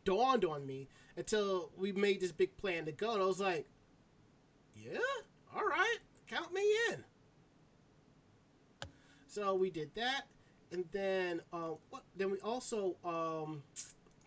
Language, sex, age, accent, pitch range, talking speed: English, male, 30-49, American, 150-205 Hz, 135 wpm